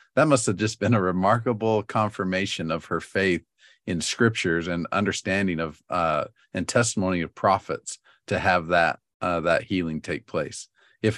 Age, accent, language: 40-59, American, English